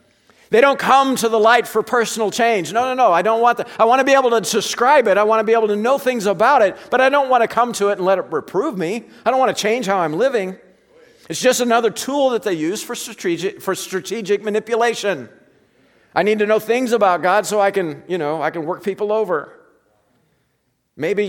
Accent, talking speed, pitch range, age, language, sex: American, 240 wpm, 150-225 Hz, 50-69, English, male